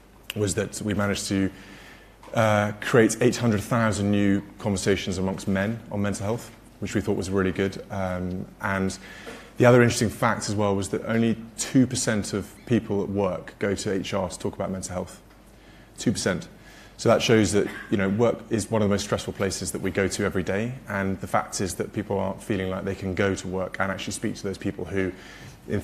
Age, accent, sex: 20-39, British, male